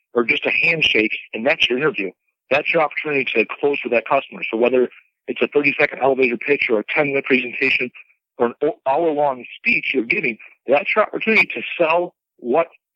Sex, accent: male, American